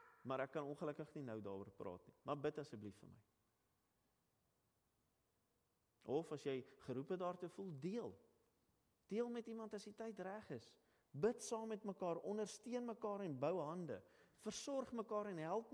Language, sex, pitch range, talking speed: English, male, 125-205 Hz, 165 wpm